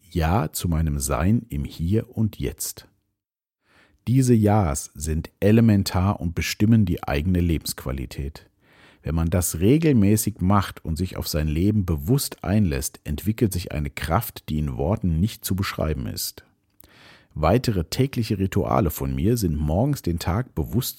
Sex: male